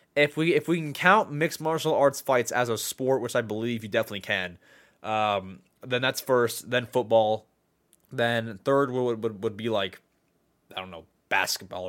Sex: male